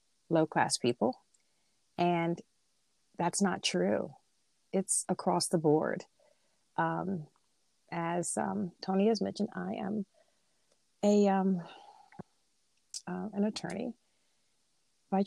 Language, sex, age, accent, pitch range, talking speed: English, female, 40-59, American, 165-195 Hz, 100 wpm